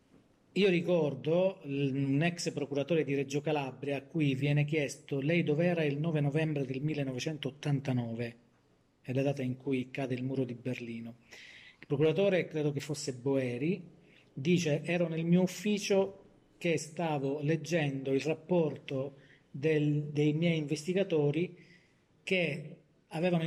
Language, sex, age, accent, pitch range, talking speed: Italian, male, 40-59, native, 135-165 Hz, 135 wpm